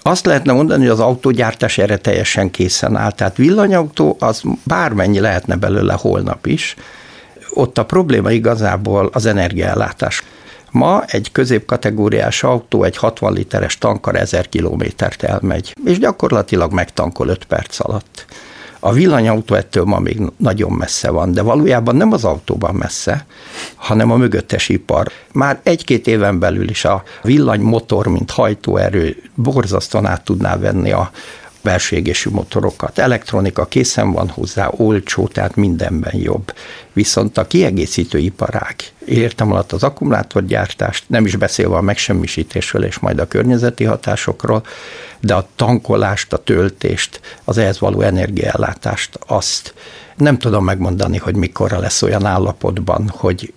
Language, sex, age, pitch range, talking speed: Hungarian, male, 60-79, 100-120 Hz, 135 wpm